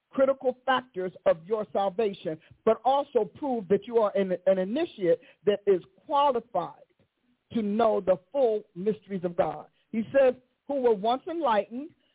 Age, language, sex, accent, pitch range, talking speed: 50-69, English, male, American, 220-290 Hz, 145 wpm